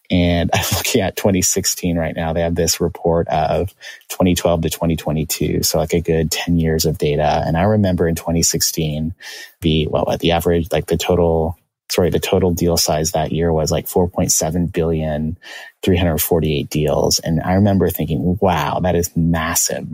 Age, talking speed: 30-49, 170 wpm